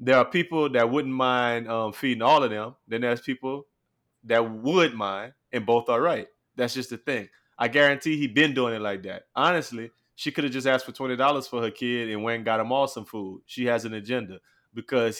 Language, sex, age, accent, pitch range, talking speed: English, male, 20-39, American, 120-150 Hz, 230 wpm